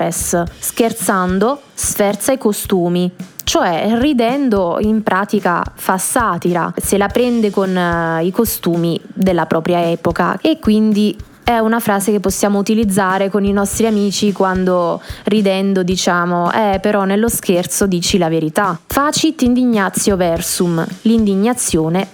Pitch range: 190-240 Hz